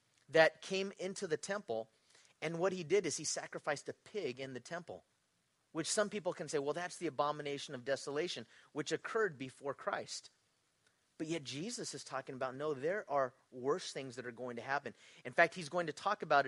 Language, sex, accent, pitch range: English, male, American, 125-160 Hz